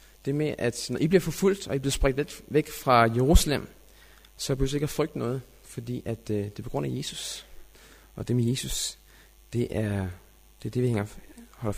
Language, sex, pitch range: Danish, male, 120-155 Hz